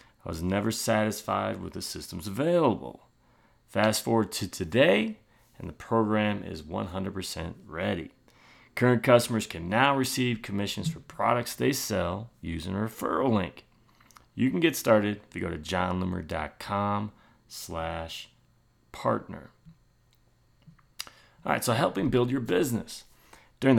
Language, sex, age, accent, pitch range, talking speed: English, male, 30-49, American, 95-120 Hz, 130 wpm